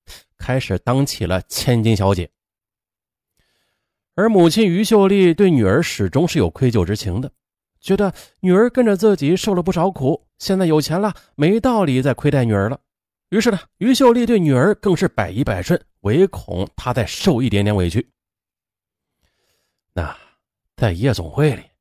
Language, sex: Chinese, male